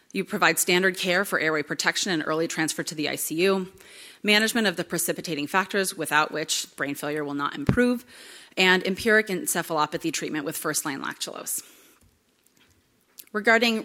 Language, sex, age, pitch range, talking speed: English, female, 30-49, 160-220 Hz, 145 wpm